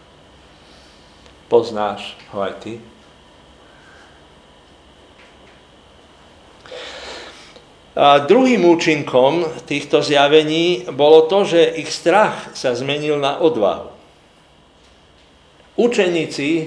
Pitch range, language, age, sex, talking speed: 100-160 Hz, Slovak, 50-69, male, 70 wpm